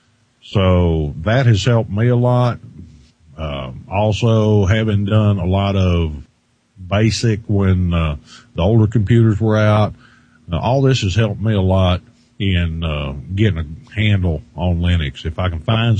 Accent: American